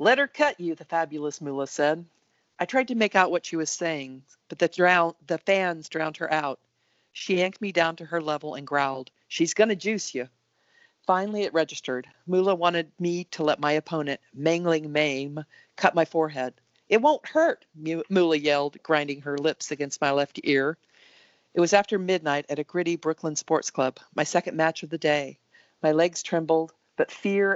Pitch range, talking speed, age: 145-175 Hz, 190 wpm, 50-69